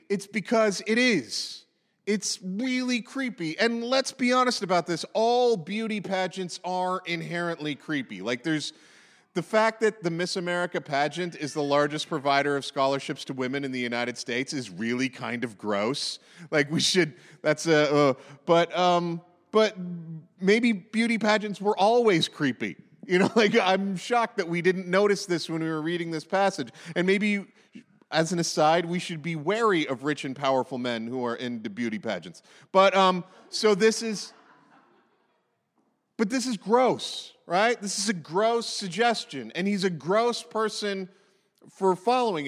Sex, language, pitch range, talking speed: male, English, 155-210 Hz, 165 wpm